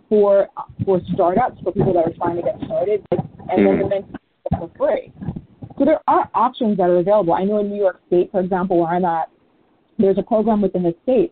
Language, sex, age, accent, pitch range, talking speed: English, female, 30-49, American, 175-220 Hz, 210 wpm